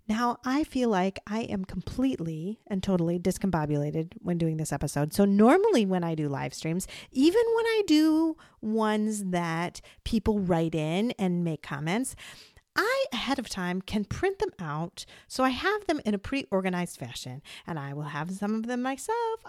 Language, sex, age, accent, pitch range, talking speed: English, female, 40-59, American, 175-245 Hz, 180 wpm